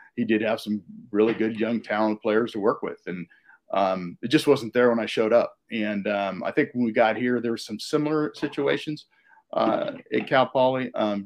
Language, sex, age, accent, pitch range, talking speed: English, male, 40-59, American, 105-125 Hz, 215 wpm